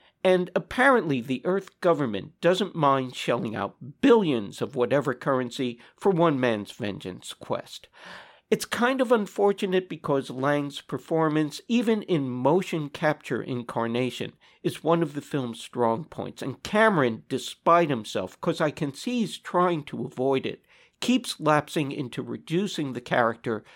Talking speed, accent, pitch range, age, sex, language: 140 wpm, American, 125-175 Hz, 50-69, male, English